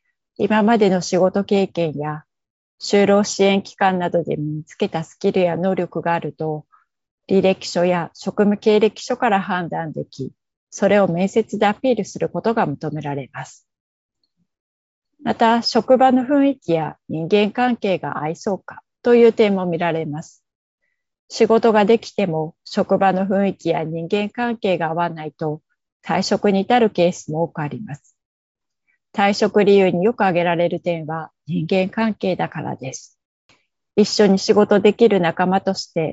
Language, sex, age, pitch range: Japanese, female, 30-49, 170-215 Hz